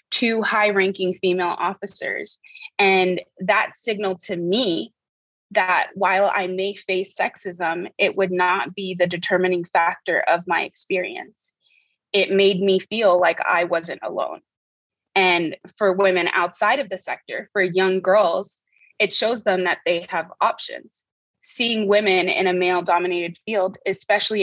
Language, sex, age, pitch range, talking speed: English, female, 20-39, 180-205 Hz, 145 wpm